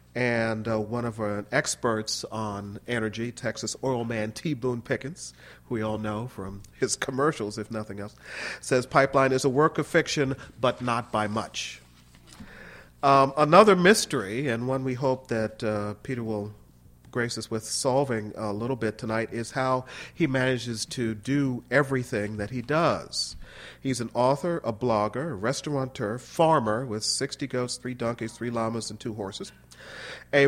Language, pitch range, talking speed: English, 110-140 Hz, 165 wpm